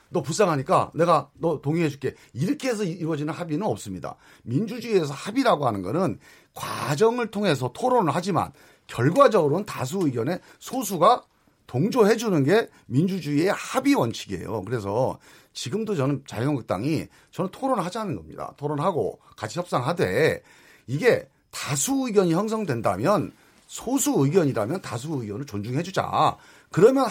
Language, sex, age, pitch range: Korean, male, 40-59, 140-230 Hz